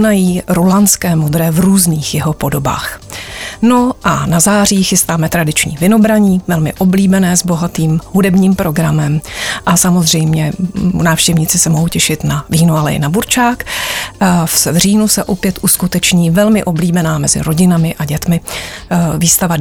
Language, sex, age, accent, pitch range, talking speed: Czech, female, 30-49, native, 165-190 Hz, 130 wpm